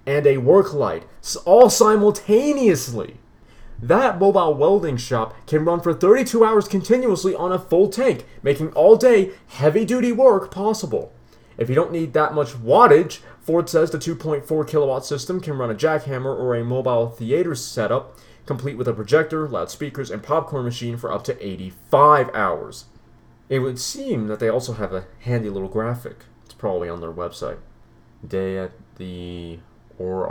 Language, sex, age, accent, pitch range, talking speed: English, male, 30-49, American, 110-155 Hz, 160 wpm